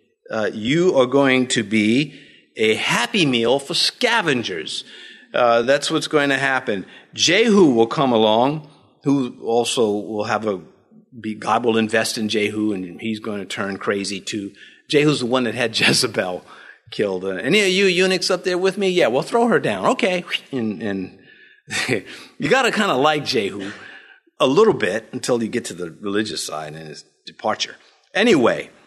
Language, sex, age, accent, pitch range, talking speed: English, male, 50-69, American, 105-160 Hz, 170 wpm